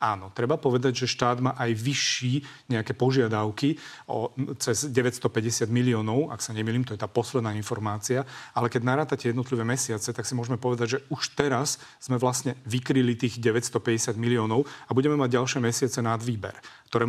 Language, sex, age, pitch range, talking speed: Slovak, male, 30-49, 115-130 Hz, 165 wpm